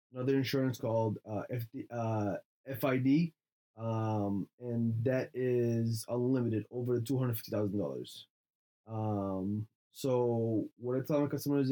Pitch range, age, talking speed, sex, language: 110-135 Hz, 20-39, 145 wpm, male, English